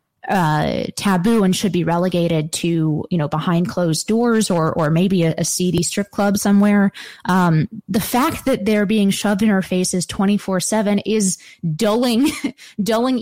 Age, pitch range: 20-39, 170-210 Hz